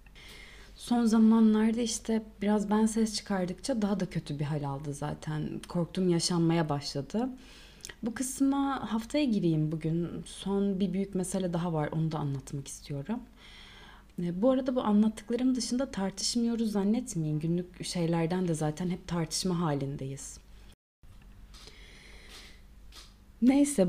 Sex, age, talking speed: female, 30-49, 120 wpm